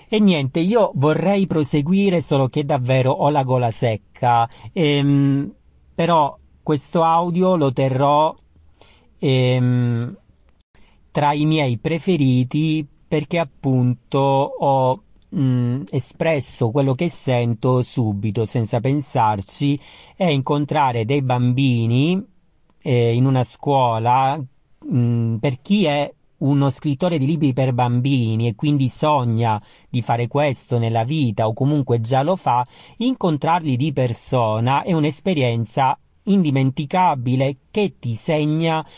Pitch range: 125-155 Hz